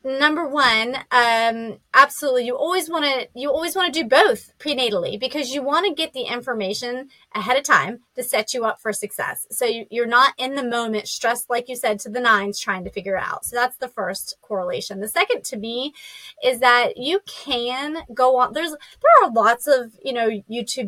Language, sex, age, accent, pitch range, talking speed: English, female, 30-49, American, 210-275 Hz, 210 wpm